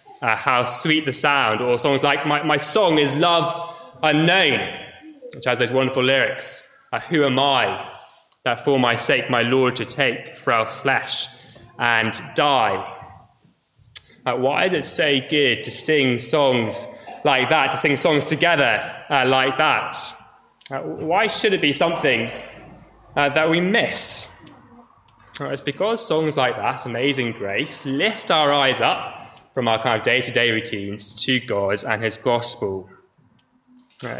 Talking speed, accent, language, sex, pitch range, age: 160 wpm, British, English, male, 120-150 Hz, 20-39